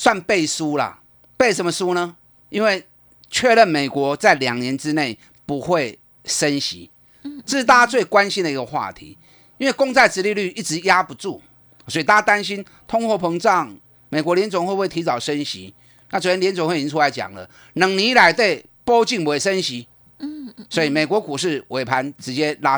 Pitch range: 140-215 Hz